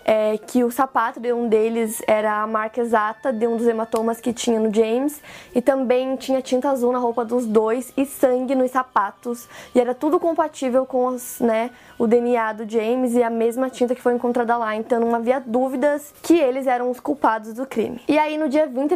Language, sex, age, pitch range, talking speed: Portuguese, female, 20-39, 240-285 Hz, 210 wpm